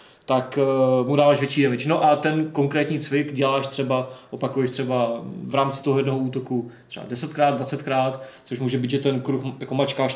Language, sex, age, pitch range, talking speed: Czech, male, 20-39, 130-145 Hz, 185 wpm